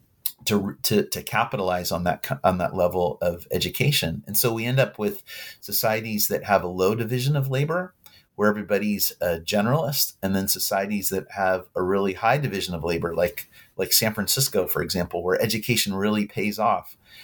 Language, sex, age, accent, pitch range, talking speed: English, male, 30-49, American, 95-115 Hz, 180 wpm